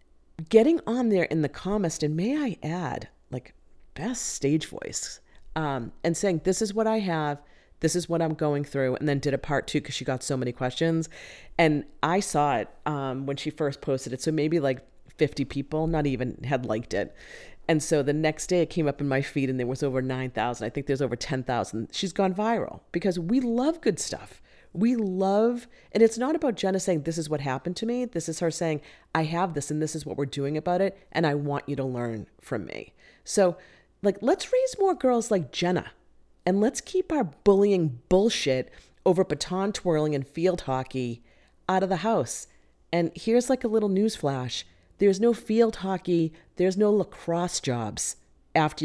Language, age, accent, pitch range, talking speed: English, 40-59, American, 135-190 Hz, 205 wpm